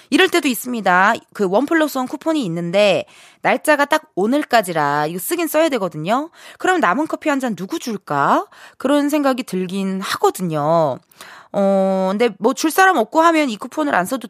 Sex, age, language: female, 20-39, Korean